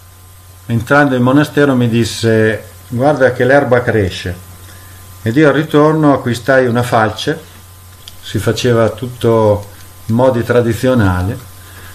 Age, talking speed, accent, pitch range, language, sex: 50-69, 110 wpm, native, 100-125 Hz, Italian, male